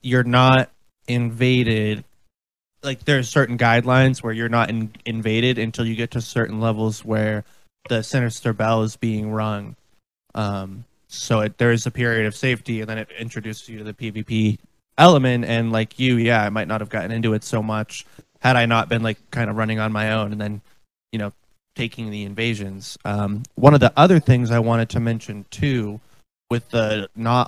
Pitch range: 110-130 Hz